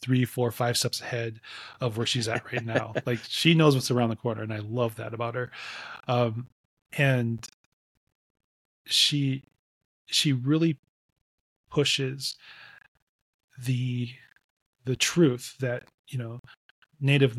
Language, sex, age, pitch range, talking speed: English, male, 30-49, 115-130 Hz, 130 wpm